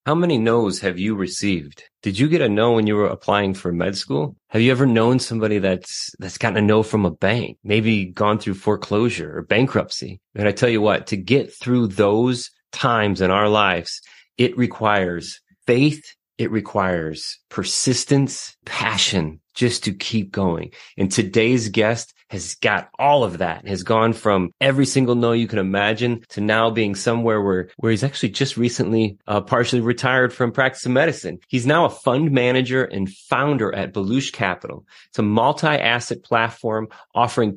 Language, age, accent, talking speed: English, 30-49, American, 175 wpm